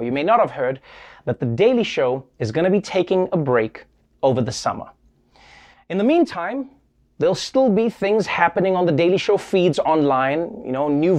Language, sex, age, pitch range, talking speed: English, male, 30-49, 150-200 Hz, 190 wpm